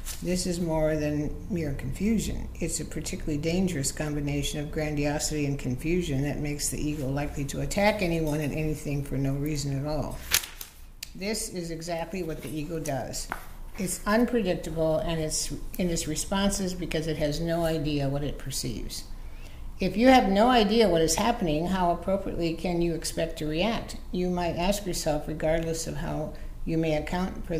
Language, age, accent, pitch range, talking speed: English, 60-79, American, 150-185 Hz, 170 wpm